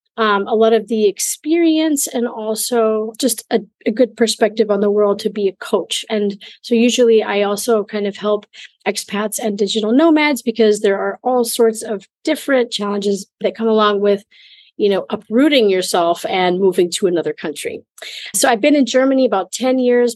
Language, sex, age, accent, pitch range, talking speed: English, female, 30-49, American, 210-250 Hz, 180 wpm